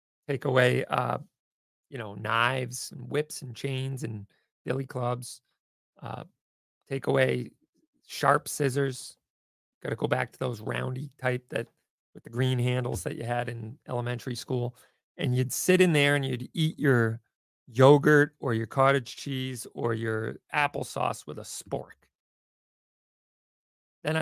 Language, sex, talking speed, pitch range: English, male, 145 wpm, 120-145 Hz